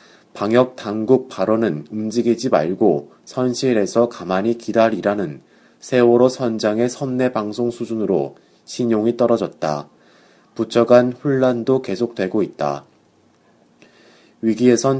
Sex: male